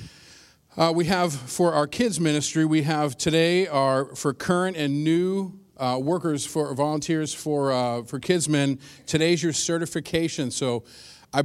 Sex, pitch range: male, 130-160 Hz